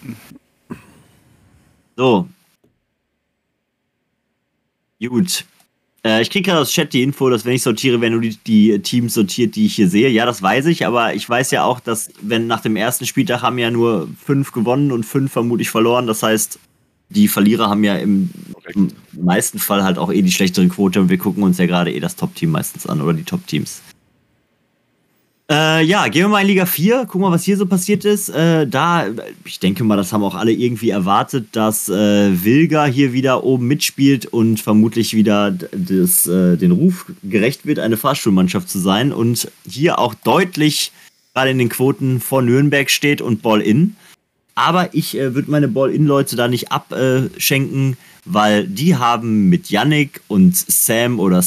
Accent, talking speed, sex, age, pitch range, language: German, 175 wpm, male, 30-49, 110-160 Hz, German